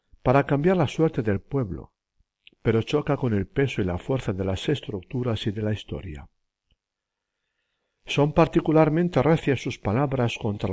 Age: 60-79